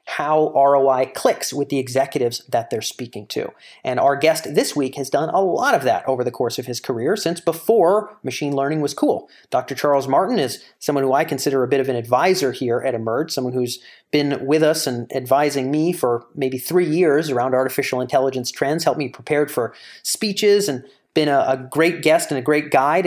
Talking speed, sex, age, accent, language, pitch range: 205 wpm, male, 30-49, American, English, 130-175 Hz